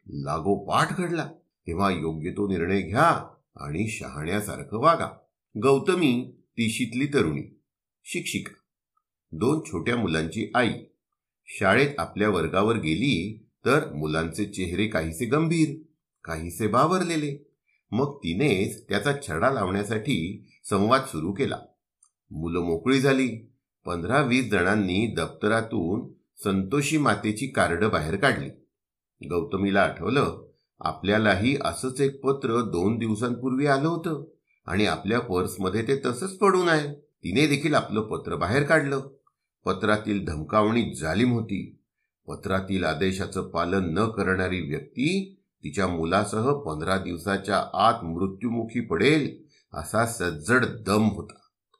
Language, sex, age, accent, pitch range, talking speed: Marathi, male, 50-69, native, 95-140 Hz, 105 wpm